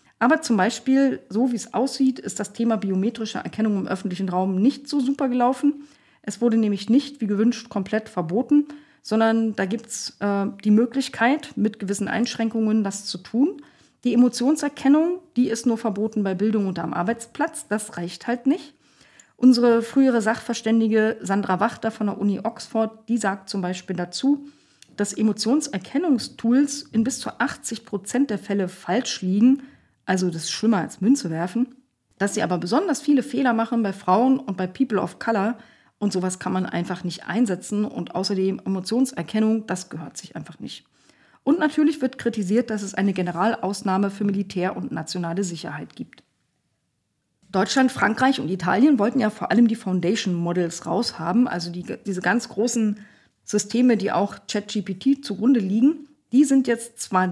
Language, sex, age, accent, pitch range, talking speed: German, female, 40-59, German, 195-255 Hz, 165 wpm